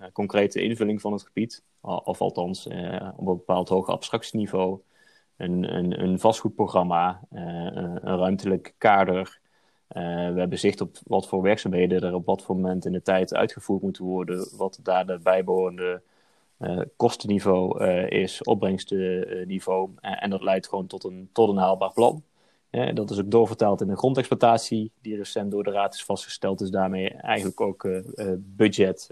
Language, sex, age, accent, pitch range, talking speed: Dutch, male, 20-39, Dutch, 95-105 Hz, 165 wpm